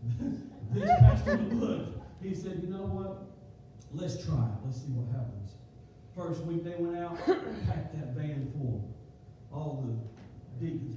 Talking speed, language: 150 wpm, English